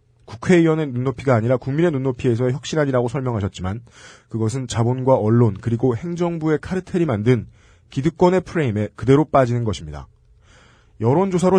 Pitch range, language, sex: 110-140 Hz, Korean, male